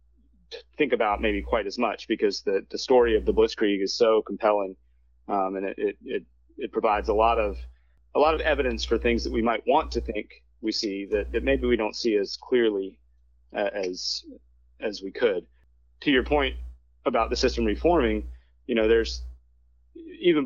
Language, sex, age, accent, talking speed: English, male, 30-49, American, 190 wpm